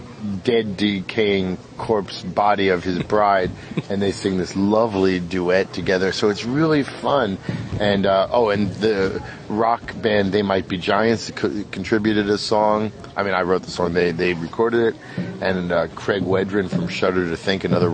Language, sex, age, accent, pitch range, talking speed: English, male, 30-49, American, 95-115 Hz, 170 wpm